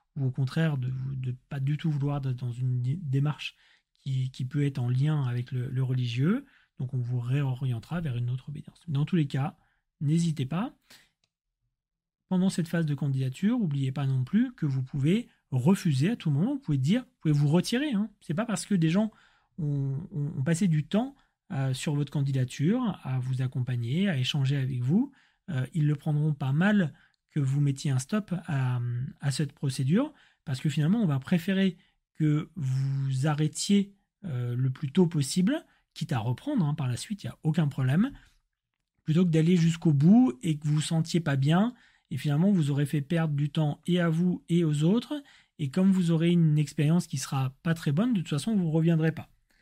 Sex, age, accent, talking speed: male, 30-49, French, 205 wpm